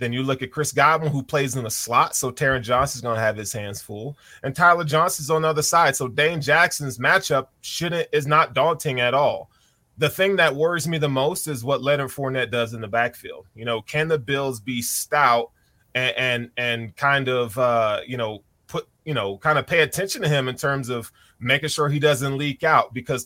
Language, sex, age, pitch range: English, male, 20-39, 125-180 Hz